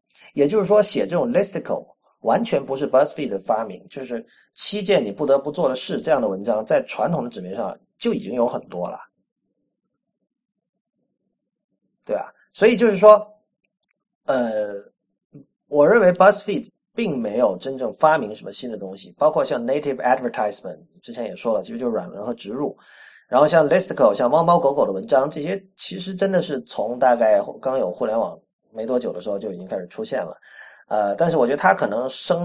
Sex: male